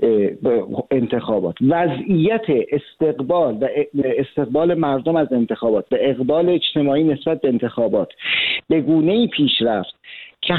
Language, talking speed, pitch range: Persian, 120 wpm, 130-170 Hz